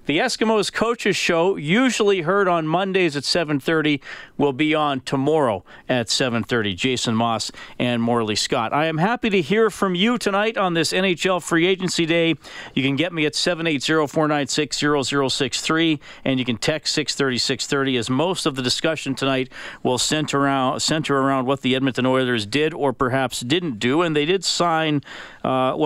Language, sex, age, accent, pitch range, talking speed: English, male, 40-59, American, 125-170 Hz, 160 wpm